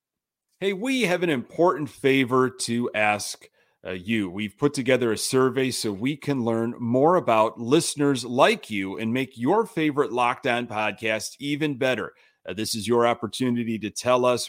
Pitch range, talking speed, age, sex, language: 110-140 Hz, 170 wpm, 40-59, male, English